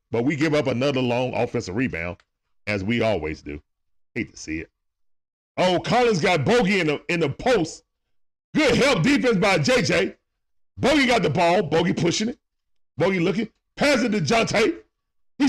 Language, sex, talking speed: English, male, 175 wpm